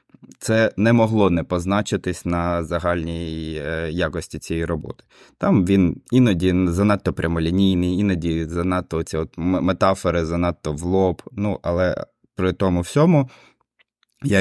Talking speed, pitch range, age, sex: 115 wpm, 80-95 Hz, 20-39, male